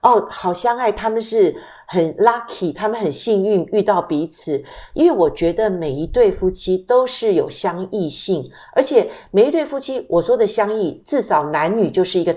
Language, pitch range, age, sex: Chinese, 160-220 Hz, 50-69, female